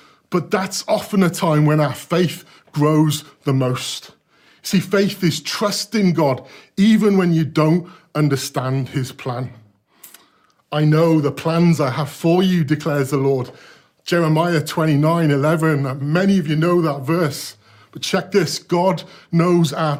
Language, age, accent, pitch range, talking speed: English, 40-59, British, 145-185 Hz, 145 wpm